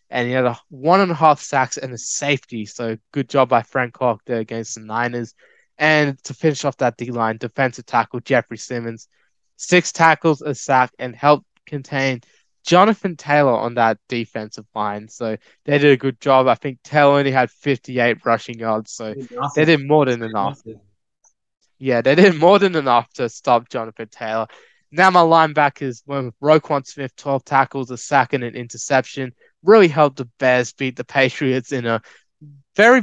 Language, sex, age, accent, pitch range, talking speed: English, male, 20-39, Australian, 120-150 Hz, 180 wpm